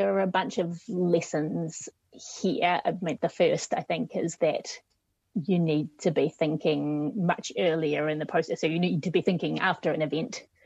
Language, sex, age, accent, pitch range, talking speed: English, female, 30-49, British, 165-210 Hz, 190 wpm